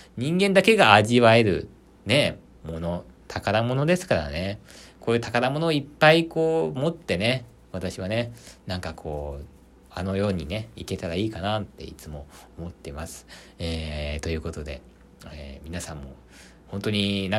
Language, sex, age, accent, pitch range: Japanese, male, 40-59, native, 85-135 Hz